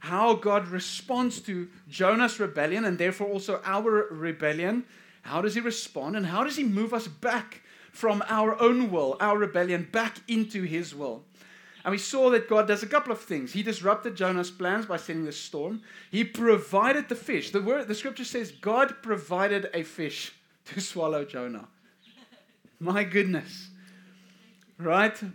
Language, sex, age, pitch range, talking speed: English, male, 30-49, 165-220 Hz, 165 wpm